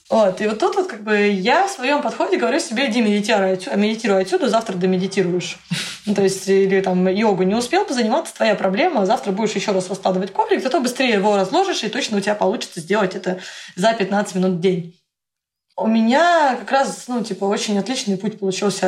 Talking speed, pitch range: 190 wpm, 190-250 Hz